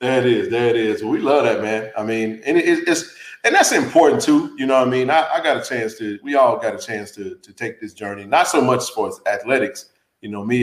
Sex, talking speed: male, 270 wpm